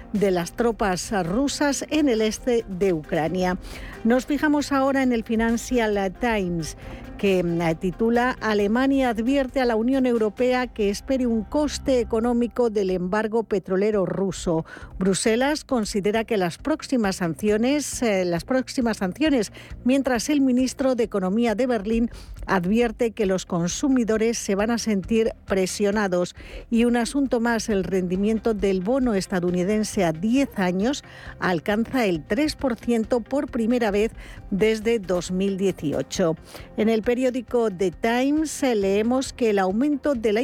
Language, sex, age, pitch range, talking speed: Spanish, female, 50-69, 195-255 Hz, 135 wpm